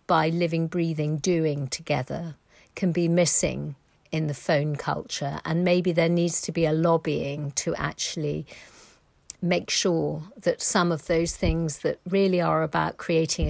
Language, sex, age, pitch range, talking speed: English, female, 50-69, 155-180 Hz, 150 wpm